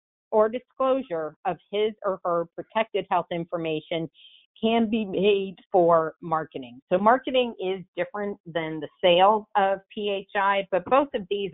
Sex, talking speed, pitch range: female, 140 wpm, 165-215 Hz